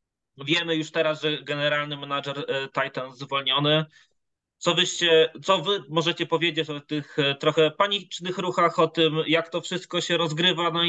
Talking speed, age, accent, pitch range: 150 wpm, 20-39, native, 150-170 Hz